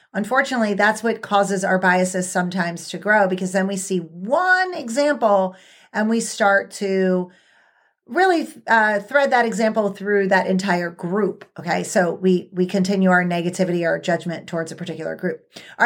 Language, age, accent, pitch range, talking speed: English, 30-49, American, 190-255 Hz, 160 wpm